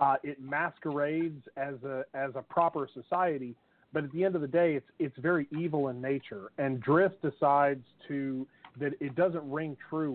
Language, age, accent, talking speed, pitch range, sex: English, 40-59, American, 185 wpm, 135-160 Hz, male